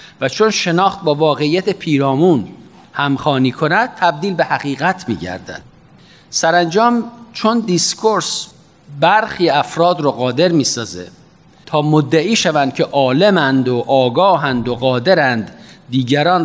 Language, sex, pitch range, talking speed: Persian, male, 140-190 Hz, 110 wpm